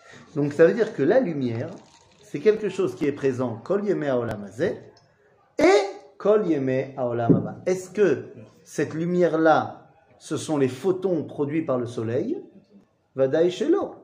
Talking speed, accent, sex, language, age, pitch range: 120 wpm, French, male, French, 40-59, 140-210 Hz